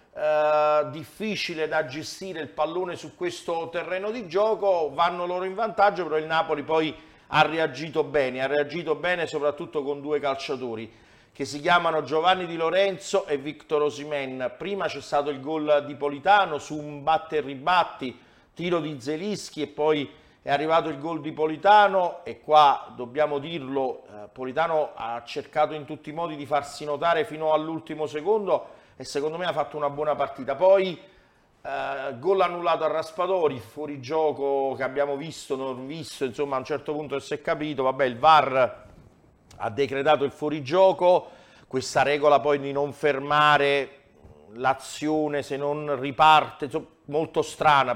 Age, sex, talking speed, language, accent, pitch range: 40-59, male, 160 wpm, Italian, native, 145-165 Hz